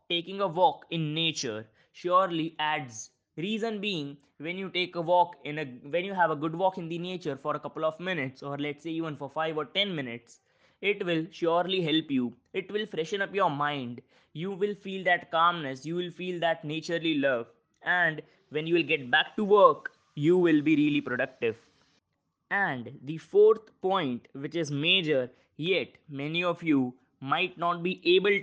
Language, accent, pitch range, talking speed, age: English, Indian, 145-185 Hz, 190 wpm, 20-39